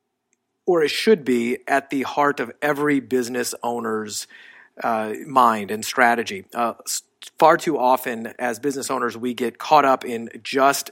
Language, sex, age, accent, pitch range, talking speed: English, male, 30-49, American, 120-140 Hz, 155 wpm